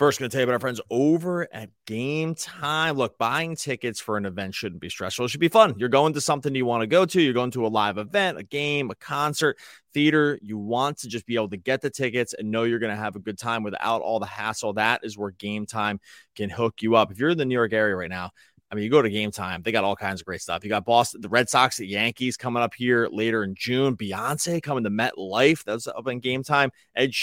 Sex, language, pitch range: male, English, 110-140 Hz